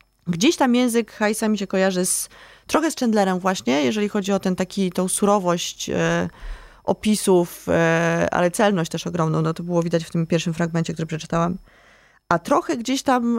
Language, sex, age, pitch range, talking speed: Polish, female, 20-39, 165-195 Hz, 180 wpm